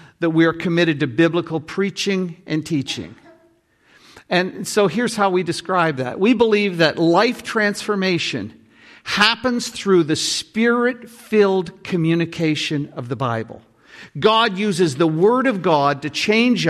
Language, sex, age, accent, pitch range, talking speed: English, male, 50-69, American, 150-205 Hz, 135 wpm